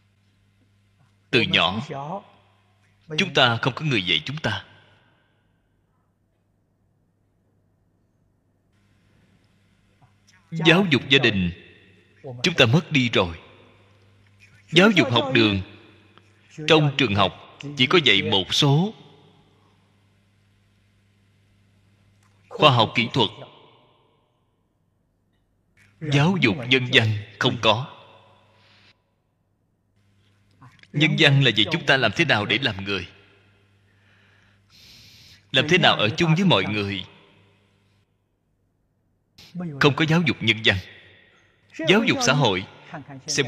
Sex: male